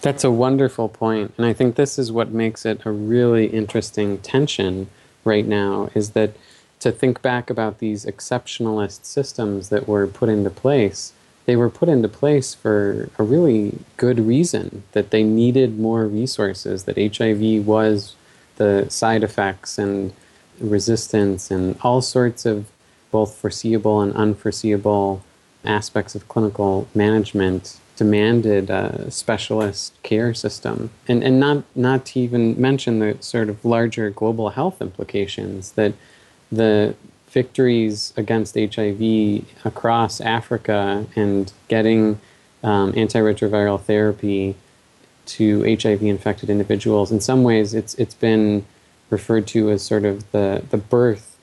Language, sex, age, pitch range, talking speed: English, male, 20-39, 105-115 Hz, 135 wpm